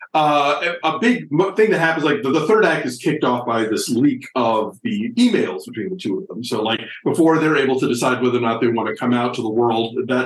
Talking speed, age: 255 wpm, 50-69